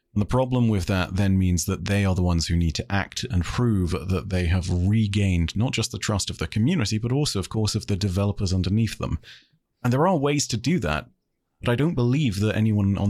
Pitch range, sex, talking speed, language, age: 95-115 Hz, male, 240 wpm, English, 30-49